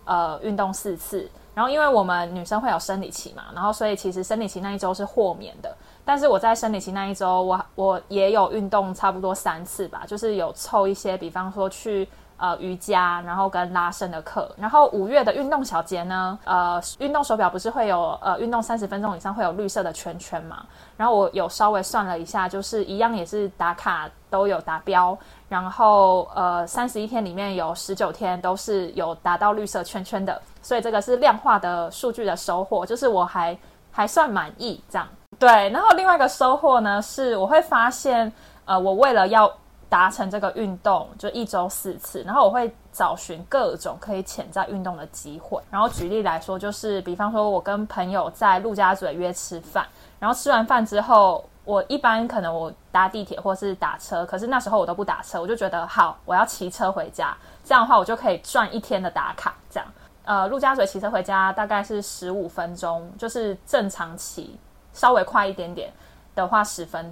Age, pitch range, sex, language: 20-39, 185-220 Hz, female, Chinese